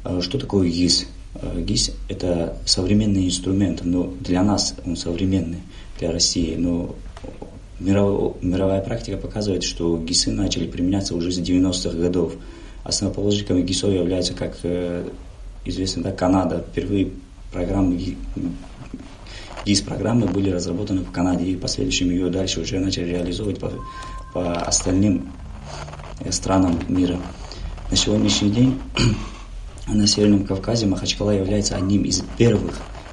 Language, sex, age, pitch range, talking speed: Russian, male, 20-39, 90-100 Hz, 120 wpm